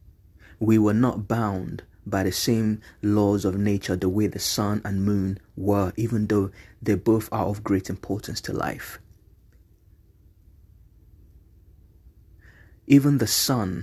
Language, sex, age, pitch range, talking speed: English, male, 30-49, 95-115 Hz, 130 wpm